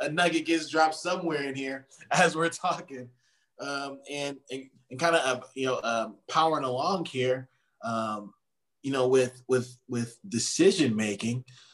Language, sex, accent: English, male, American